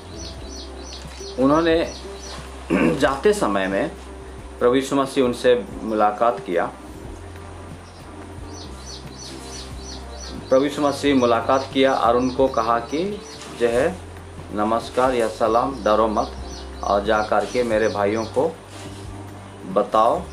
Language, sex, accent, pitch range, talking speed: Hindi, male, native, 95-125 Hz, 85 wpm